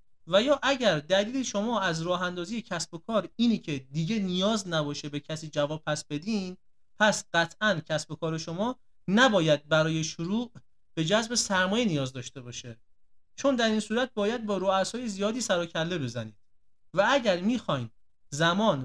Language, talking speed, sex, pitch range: Persian, 160 wpm, male, 150-215 Hz